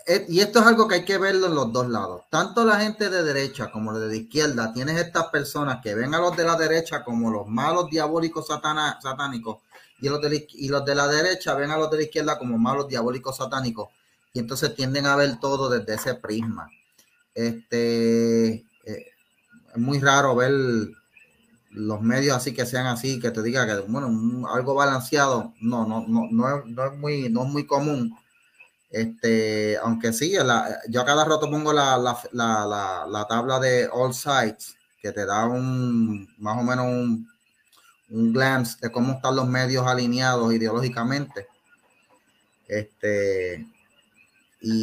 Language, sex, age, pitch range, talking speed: Spanish, male, 30-49, 115-150 Hz, 180 wpm